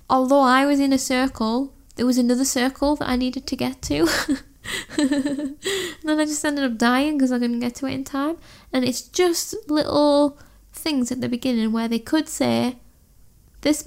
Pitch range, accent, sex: 240-275 Hz, British, female